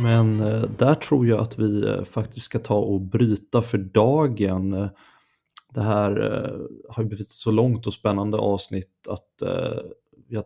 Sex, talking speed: male, 145 wpm